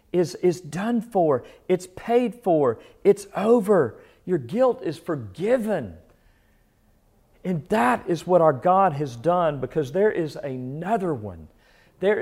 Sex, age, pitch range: male, 50-69, 120-195 Hz